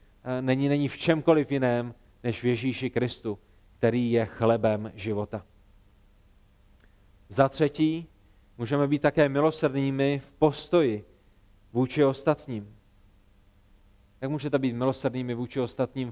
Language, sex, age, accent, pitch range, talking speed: Czech, male, 40-59, native, 115-160 Hz, 110 wpm